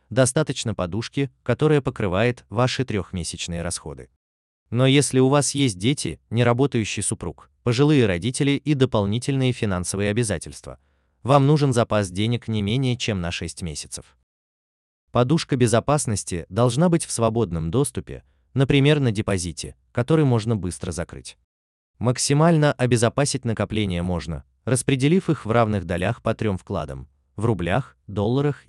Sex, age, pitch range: male, 20-39, 85-130 Hz